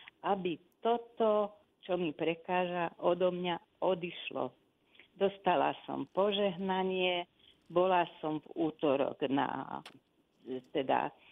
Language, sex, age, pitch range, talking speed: Slovak, female, 40-59, 175-215 Hz, 90 wpm